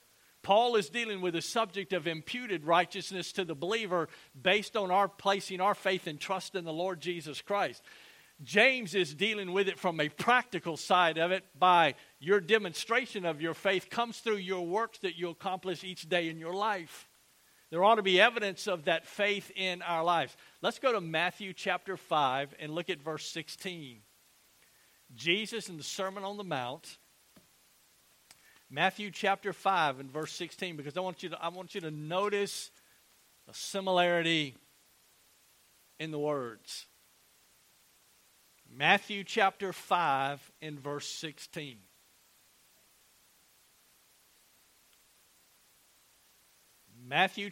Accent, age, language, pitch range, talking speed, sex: American, 50-69, English, 160-200 Hz, 135 wpm, male